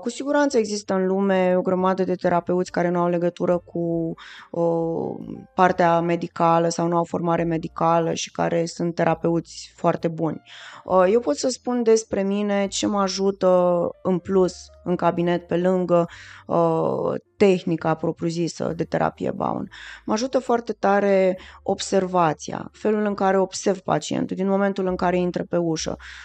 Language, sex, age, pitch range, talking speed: Romanian, female, 20-39, 170-200 Hz, 145 wpm